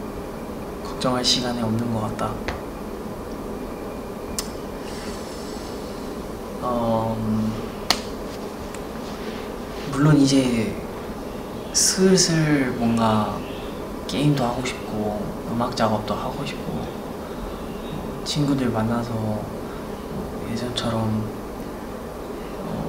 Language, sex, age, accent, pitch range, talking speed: English, male, 20-39, Korean, 110-130 Hz, 50 wpm